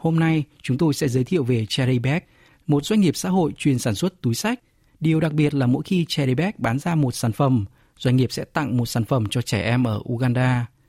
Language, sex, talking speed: Vietnamese, male, 235 wpm